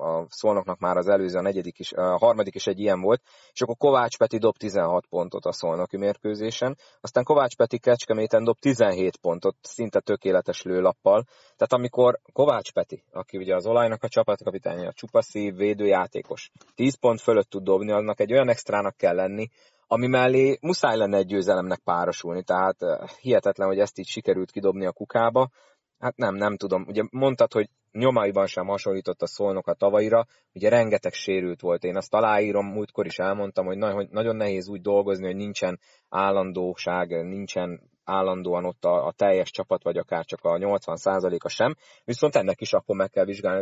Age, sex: 30-49, male